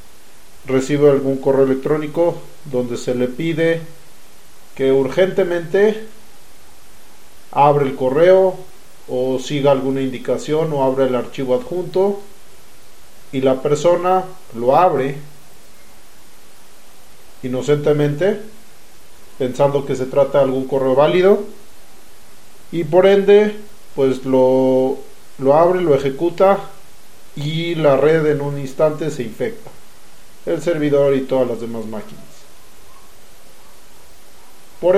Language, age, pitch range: Spanish, 40-59, 135-170 Hz